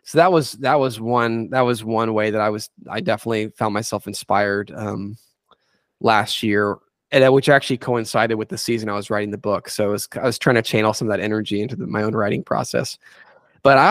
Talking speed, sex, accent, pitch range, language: 230 wpm, male, American, 110-130 Hz, English